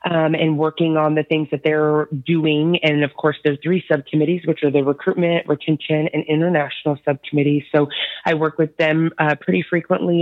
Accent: American